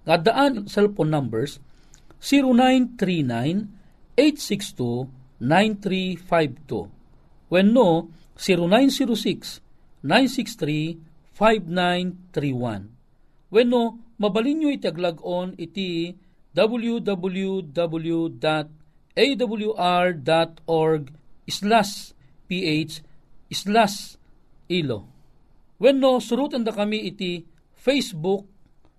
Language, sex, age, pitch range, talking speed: Filipino, male, 50-69, 150-210 Hz, 70 wpm